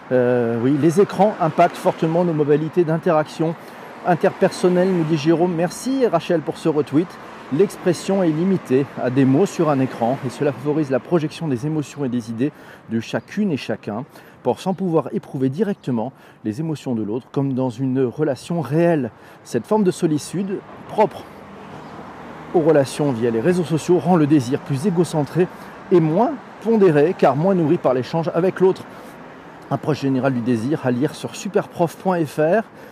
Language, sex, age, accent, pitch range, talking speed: French, male, 40-59, French, 130-180 Hz, 165 wpm